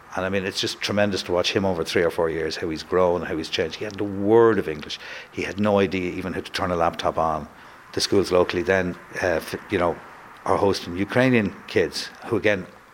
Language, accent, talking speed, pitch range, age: English, Irish, 235 wpm, 95-115 Hz, 60-79